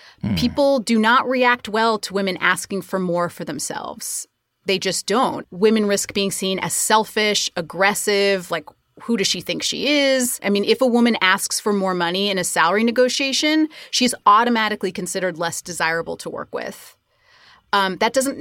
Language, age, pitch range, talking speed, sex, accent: English, 30-49, 190-260 Hz, 175 wpm, female, American